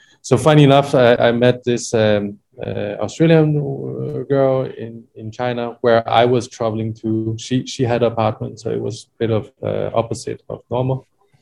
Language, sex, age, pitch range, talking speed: English, male, 20-39, 105-125 Hz, 180 wpm